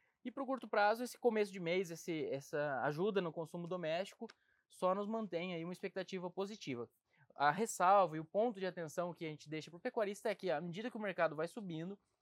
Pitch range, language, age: 175-215 Hz, Portuguese, 20-39